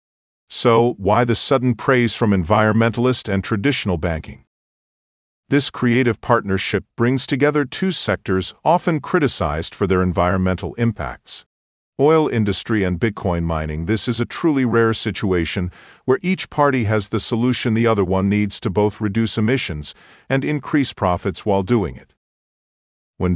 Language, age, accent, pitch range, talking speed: English, 50-69, American, 95-120 Hz, 140 wpm